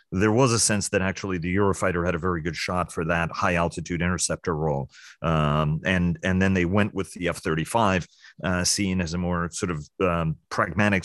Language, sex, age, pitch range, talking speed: English, male, 40-59, 85-100 Hz, 200 wpm